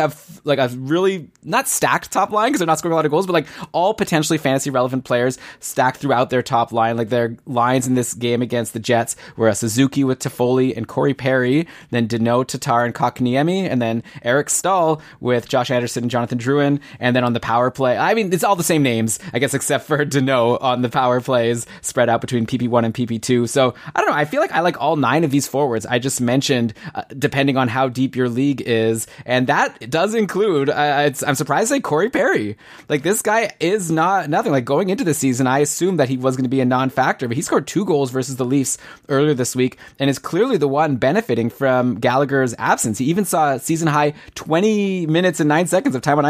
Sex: male